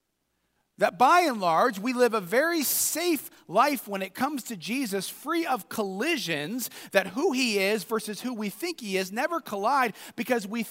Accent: American